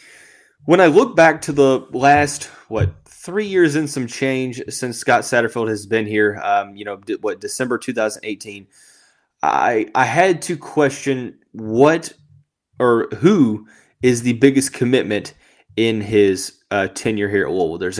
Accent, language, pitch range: American, English, 105-140 Hz